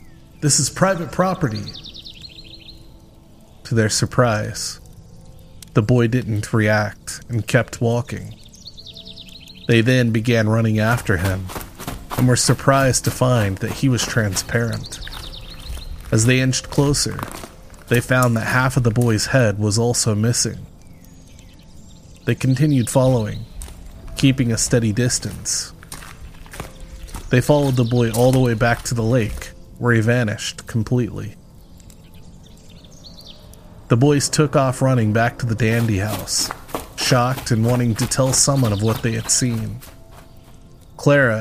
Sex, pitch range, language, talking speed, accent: male, 110-125 Hz, English, 130 wpm, American